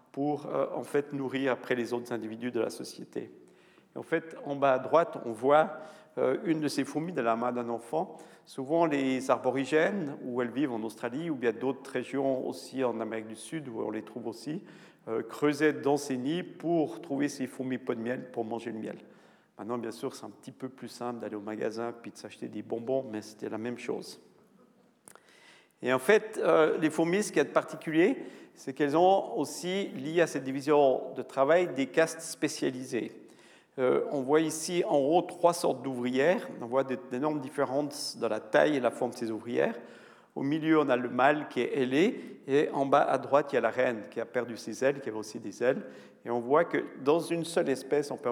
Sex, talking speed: male, 220 wpm